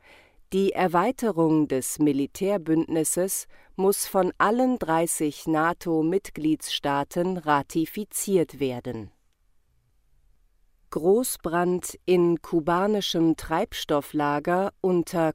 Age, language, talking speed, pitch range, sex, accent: 40-59, German, 65 wpm, 150-195 Hz, female, German